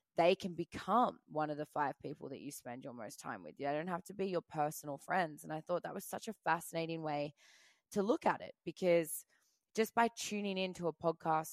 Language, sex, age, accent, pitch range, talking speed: English, female, 20-39, Australian, 150-180 Hz, 225 wpm